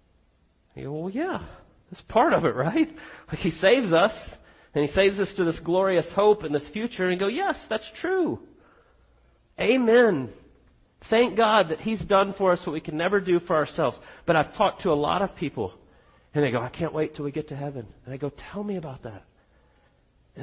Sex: male